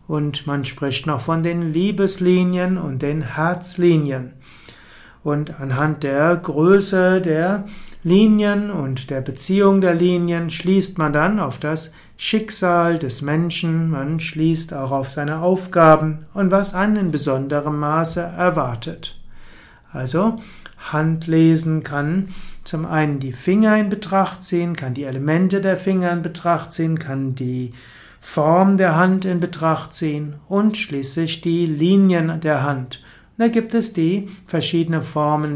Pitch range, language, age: 150-180 Hz, German, 60-79